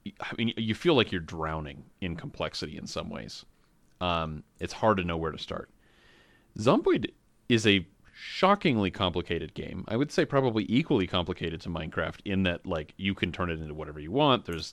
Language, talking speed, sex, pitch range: English, 185 wpm, male, 90-110 Hz